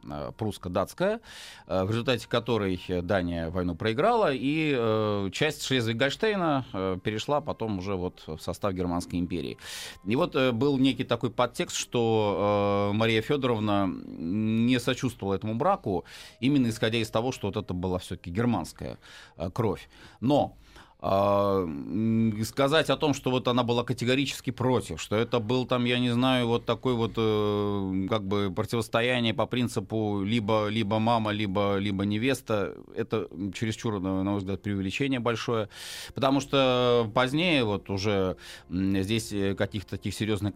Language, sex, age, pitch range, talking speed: Russian, male, 30-49, 95-120 Hz, 130 wpm